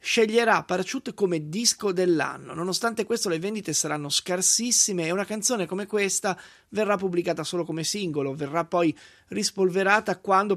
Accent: native